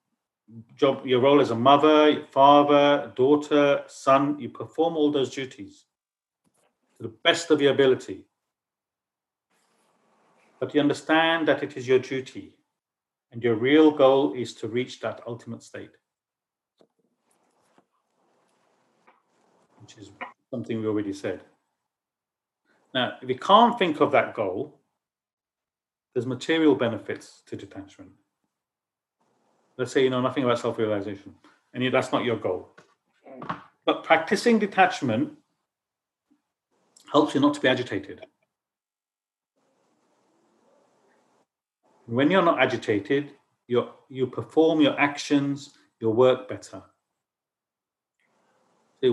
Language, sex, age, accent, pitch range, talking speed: English, male, 40-59, British, 120-145 Hz, 110 wpm